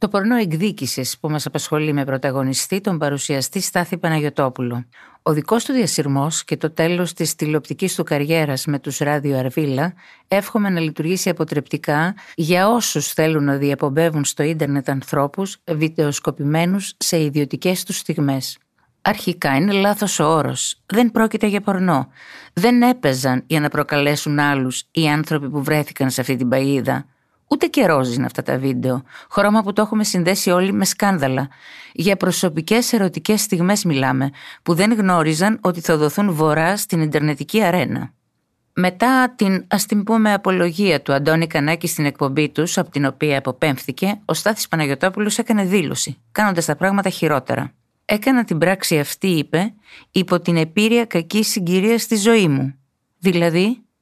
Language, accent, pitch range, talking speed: Greek, native, 145-195 Hz, 150 wpm